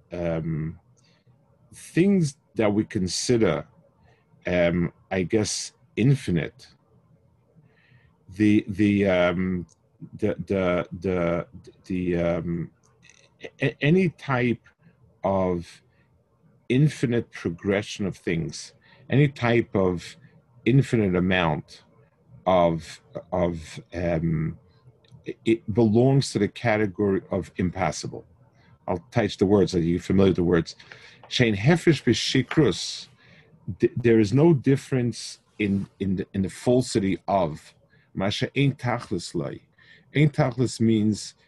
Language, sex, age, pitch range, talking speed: English, male, 50-69, 95-135 Hz, 90 wpm